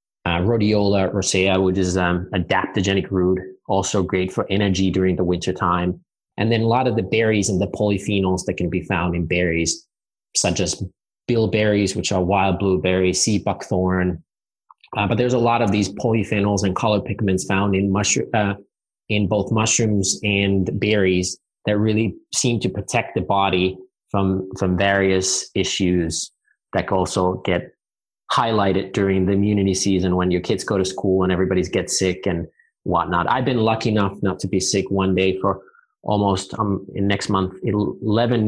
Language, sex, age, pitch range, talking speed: English, male, 30-49, 95-105 Hz, 175 wpm